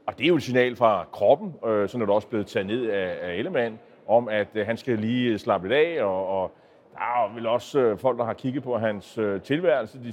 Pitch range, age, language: 115-140 Hz, 30-49, Danish